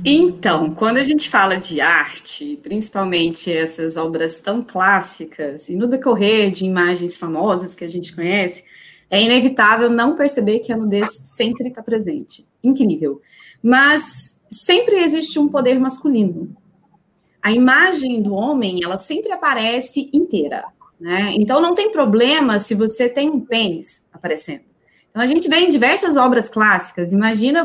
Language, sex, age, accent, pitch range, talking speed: Portuguese, female, 20-39, Brazilian, 195-280 Hz, 145 wpm